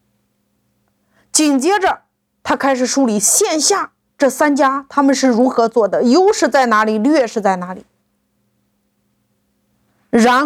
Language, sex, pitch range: Chinese, female, 210-315 Hz